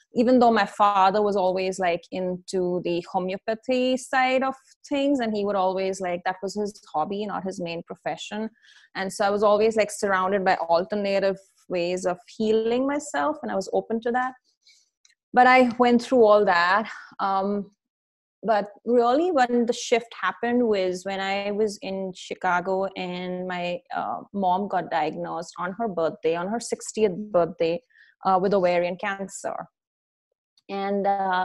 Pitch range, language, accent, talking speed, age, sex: 180-220 Hz, English, Indian, 155 wpm, 20-39, female